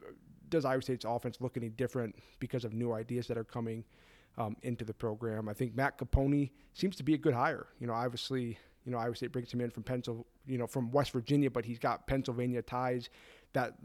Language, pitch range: English, 120-135 Hz